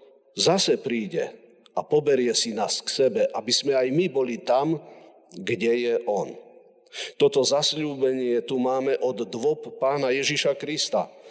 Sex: male